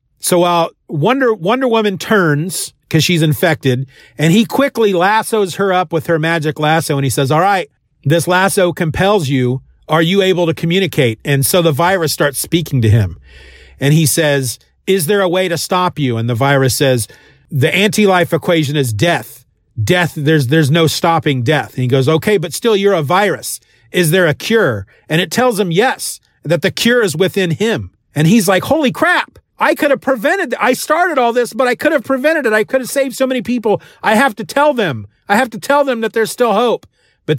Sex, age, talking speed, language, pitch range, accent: male, 40-59, 210 wpm, English, 155-220 Hz, American